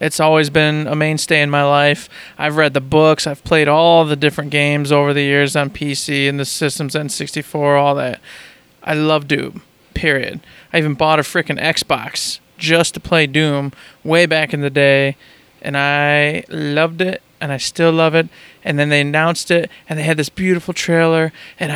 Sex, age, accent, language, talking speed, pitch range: male, 20-39, American, English, 190 wpm, 145-170 Hz